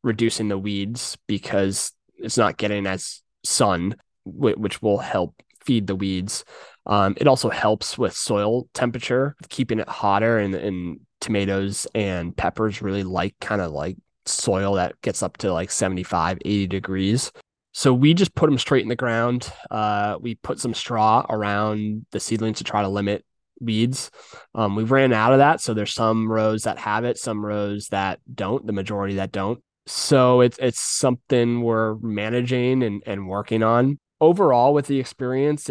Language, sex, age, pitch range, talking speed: English, male, 20-39, 100-125 Hz, 170 wpm